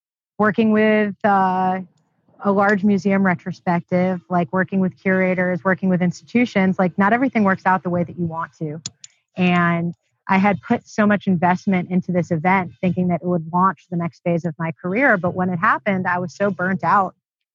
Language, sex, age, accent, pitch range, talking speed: English, female, 30-49, American, 175-200 Hz, 190 wpm